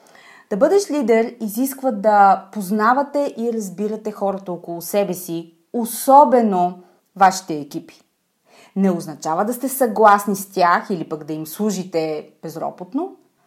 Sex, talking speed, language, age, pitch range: female, 125 wpm, Bulgarian, 30-49, 180-245 Hz